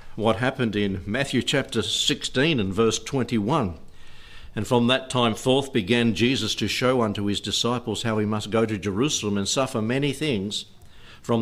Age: 60-79